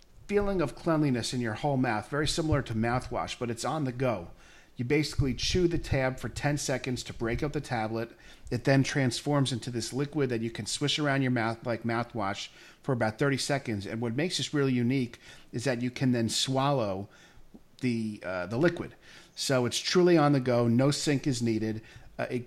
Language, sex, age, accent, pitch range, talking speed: English, male, 50-69, American, 110-135 Hz, 205 wpm